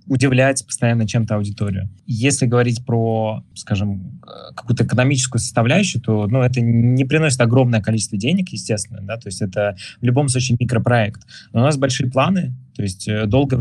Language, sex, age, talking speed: Russian, male, 20-39, 160 wpm